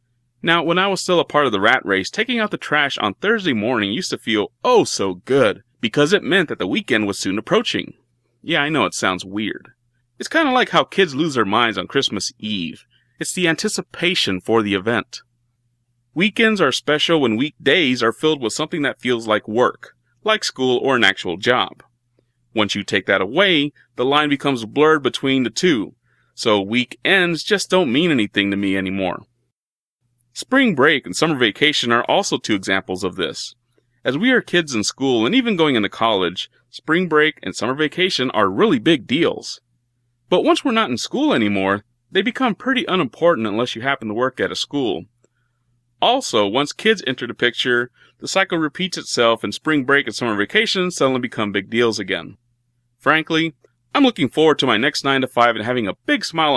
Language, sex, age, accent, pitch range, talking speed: English, male, 30-49, American, 115-165 Hz, 195 wpm